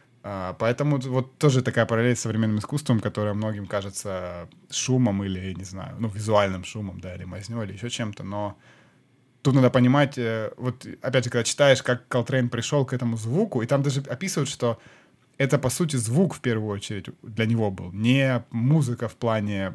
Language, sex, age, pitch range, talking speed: Ukrainian, male, 20-39, 110-130 Hz, 180 wpm